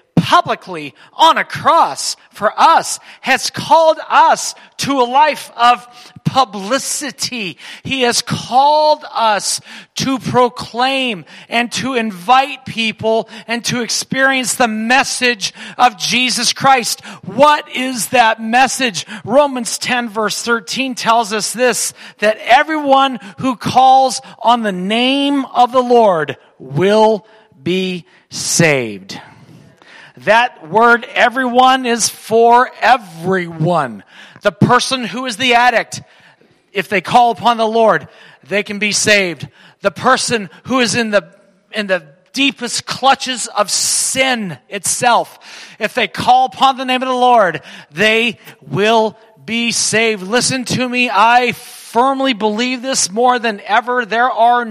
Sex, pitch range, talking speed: male, 200-255 Hz, 125 wpm